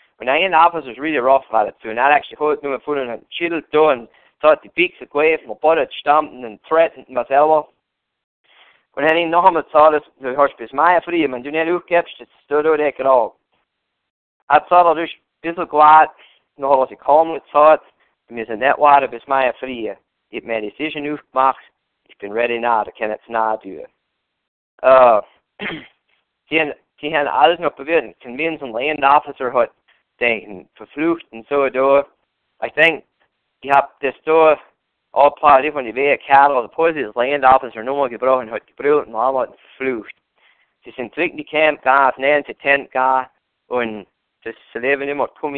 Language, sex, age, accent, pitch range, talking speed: English, male, 50-69, American, 125-155 Hz, 160 wpm